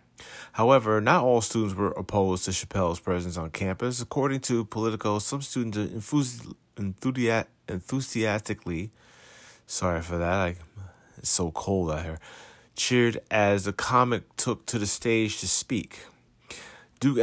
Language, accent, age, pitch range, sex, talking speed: English, American, 30-49, 95-115 Hz, male, 140 wpm